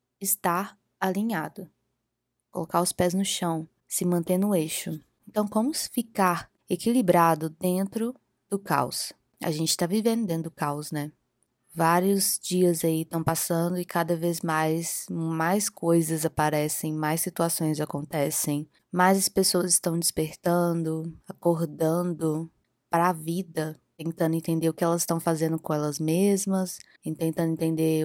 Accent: Brazilian